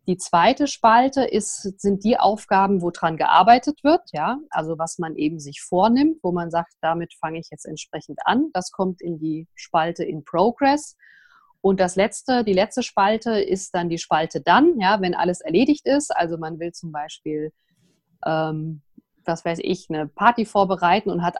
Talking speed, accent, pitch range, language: 180 wpm, German, 170-215 Hz, German